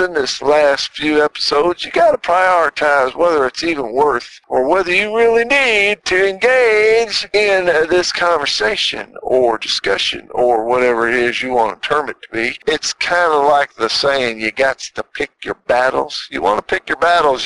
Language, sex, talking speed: English, male, 175 wpm